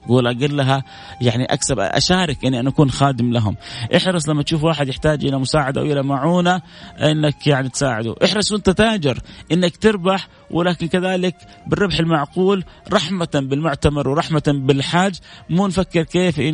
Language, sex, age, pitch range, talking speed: Arabic, male, 30-49, 130-175 Hz, 140 wpm